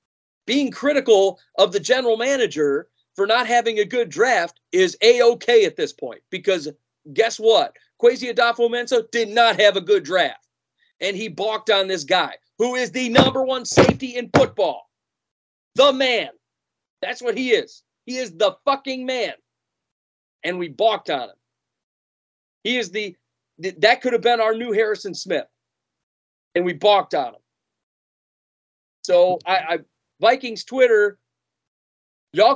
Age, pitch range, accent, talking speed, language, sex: 40-59, 185-260 Hz, American, 150 wpm, English, male